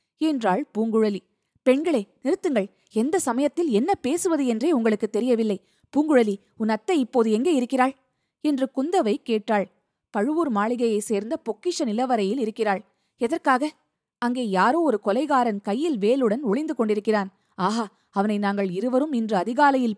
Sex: female